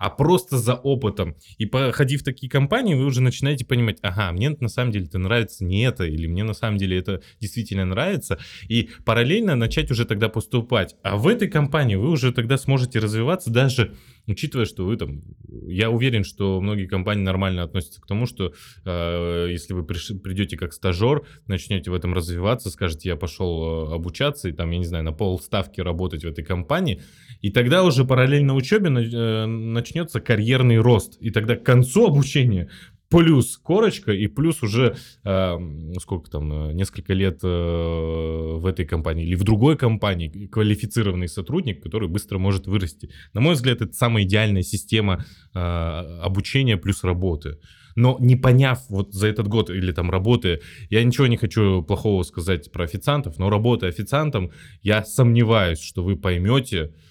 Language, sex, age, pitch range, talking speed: Russian, male, 20-39, 90-125 Hz, 170 wpm